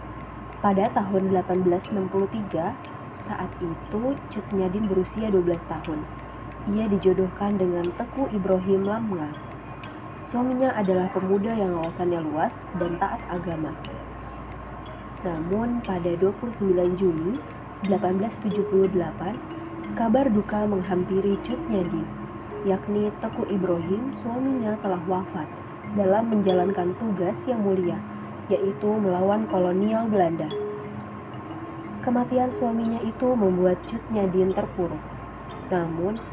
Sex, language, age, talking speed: female, Indonesian, 20-39, 95 wpm